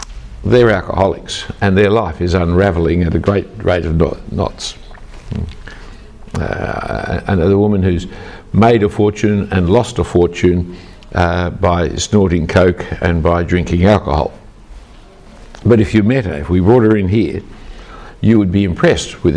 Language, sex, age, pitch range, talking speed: English, male, 60-79, 90-115 Hz, 150 wpm